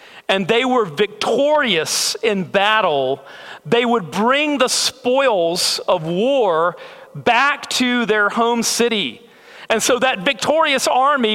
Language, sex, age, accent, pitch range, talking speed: English, male, 40-59, American, 210-290 Hz, 120 wpm